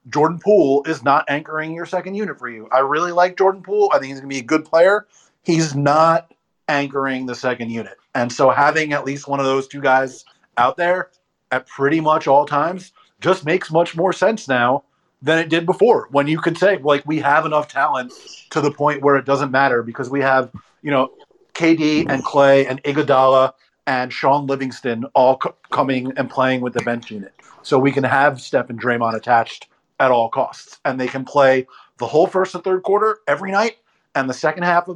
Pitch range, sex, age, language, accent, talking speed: 130-160 Hz, male, 30-49, English, American, 210 wpm